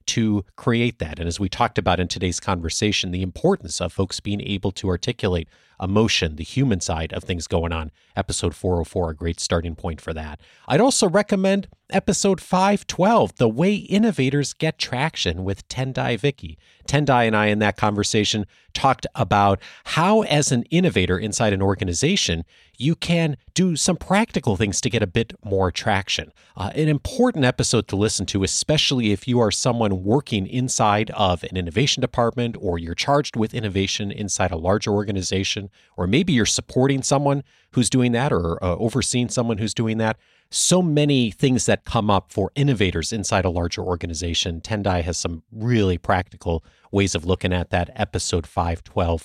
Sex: male